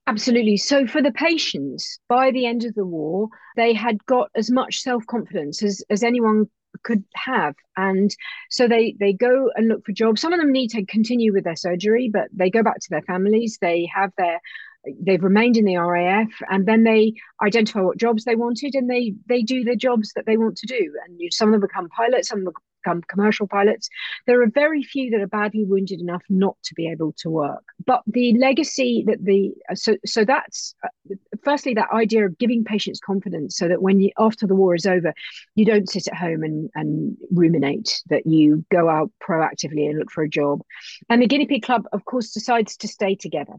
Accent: British